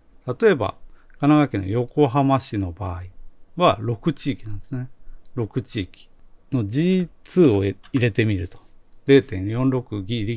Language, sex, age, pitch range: Japanese, male, 40-59, 95-145 Hz